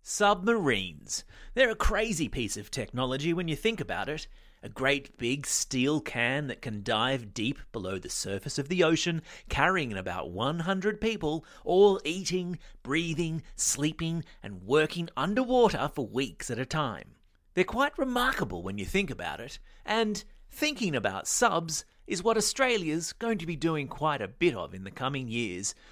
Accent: Australian